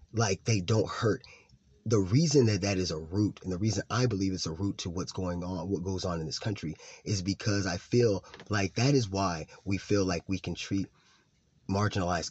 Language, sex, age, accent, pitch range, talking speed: English, male, 20-39, American, 90-110 Hz, 215 wpm